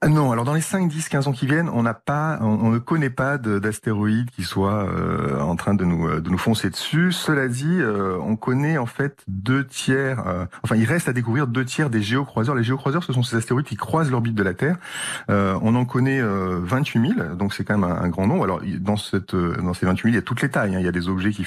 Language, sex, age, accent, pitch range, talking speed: French, male, 30-49, French, 100-130 Hz, 270 wpm